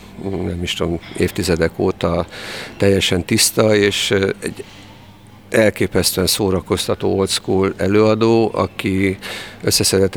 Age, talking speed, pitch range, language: 50-69, 95 wpm, 90-105 Hz, Hungarian